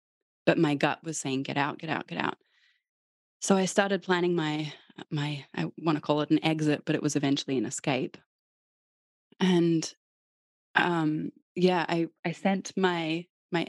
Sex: female